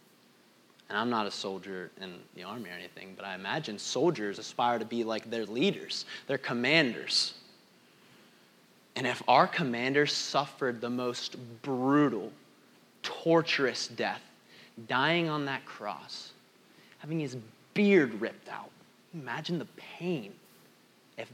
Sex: male